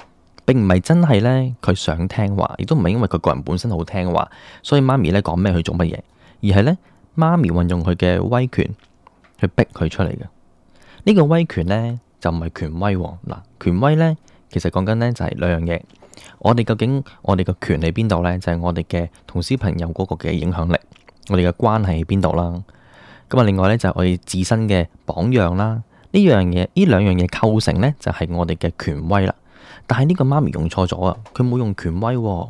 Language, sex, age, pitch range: Chinese, male, 10-29, 85-115 Hz